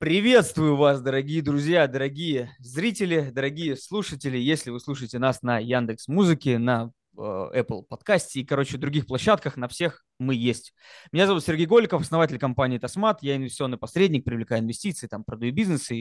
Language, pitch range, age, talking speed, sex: Russian, 135-175 Hz, 20-39, 155 wpm, male